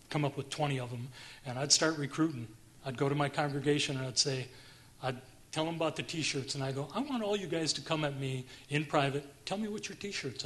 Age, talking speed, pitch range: 40-59, 245 wpm, 130-165 Hz